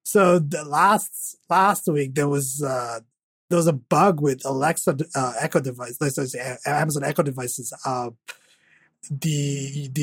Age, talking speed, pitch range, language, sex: 20-39, 140 wpm, 135-175 Hz, English, male